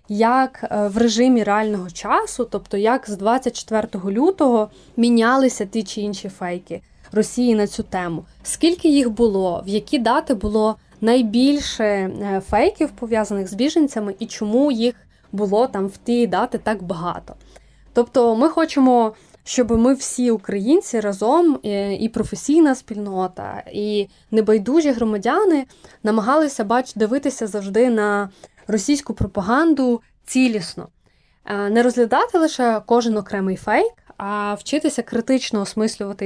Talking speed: 120 wpm